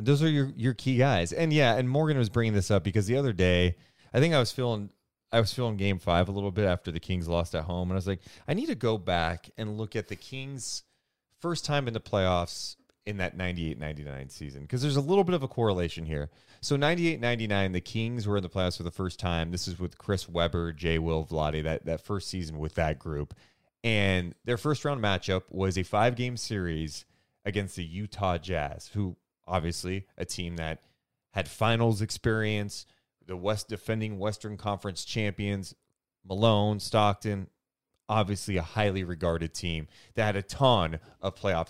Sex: male